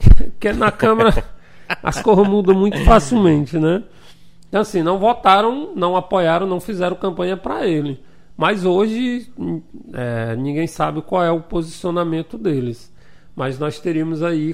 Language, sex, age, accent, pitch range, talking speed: Portuguese, male, 40-59, Brazilian, 160-210 Hz, 140 wpm